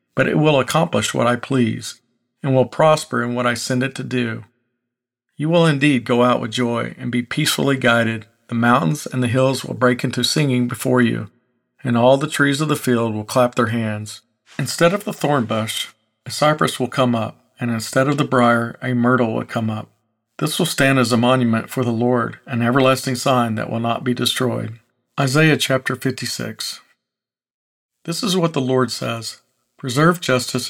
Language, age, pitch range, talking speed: English, 50-69, 120-135 Hz, 190 wpm